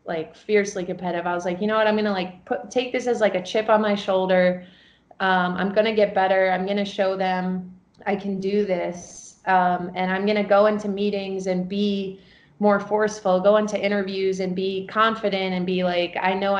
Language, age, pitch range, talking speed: English, 20-39, 180-205 Hz, 205 wpm